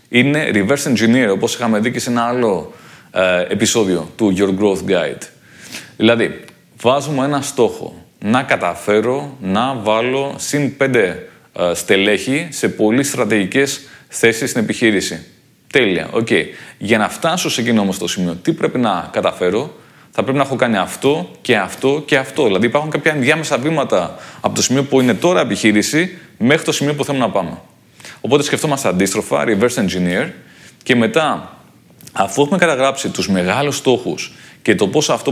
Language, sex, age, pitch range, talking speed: Greek, male, 30-49, 110-145 Hz, 160 wpm